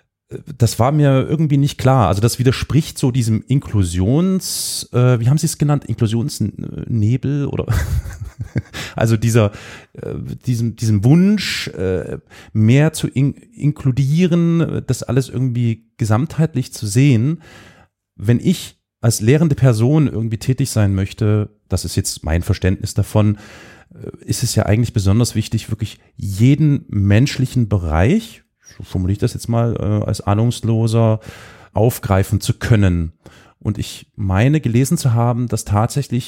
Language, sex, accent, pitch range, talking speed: German, male, German, 105-135 Hz, 135 wpm